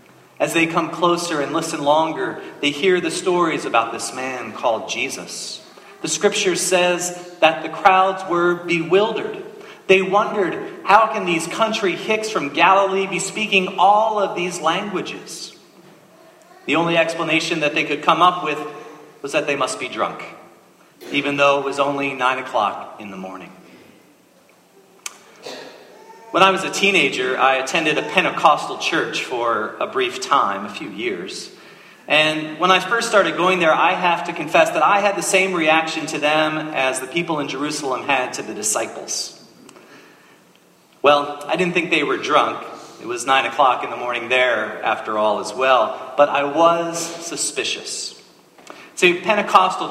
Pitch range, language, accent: 145-190 Hz, English, American